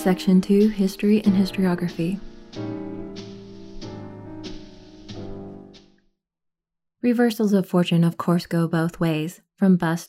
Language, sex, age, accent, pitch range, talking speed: English, female, 20-39, American, 170-210 Hz, 90 wpm